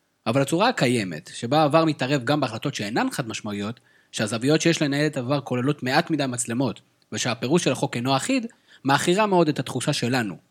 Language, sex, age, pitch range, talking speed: Hebrew, male, 30-49, 115-160 Hz, 170 wpm